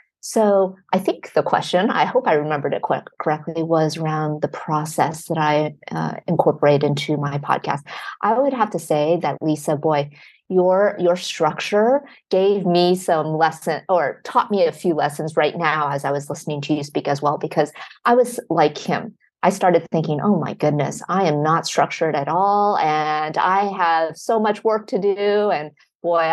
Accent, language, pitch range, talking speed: American, English, 155-195 Hz, 185 wpm